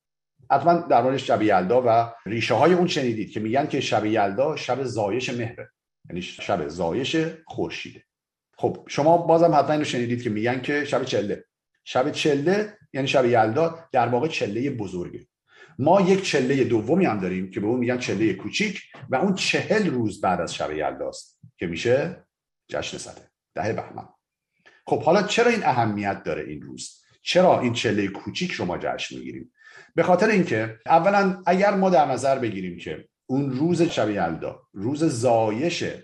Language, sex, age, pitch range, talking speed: Persian, male, 50-69, 115-170 Hz, 165 wpm